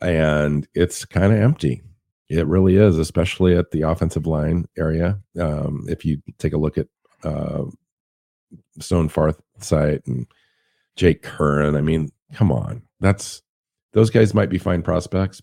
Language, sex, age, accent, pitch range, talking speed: English, male, 50-69, American, 80-90 Hz, 150 wpm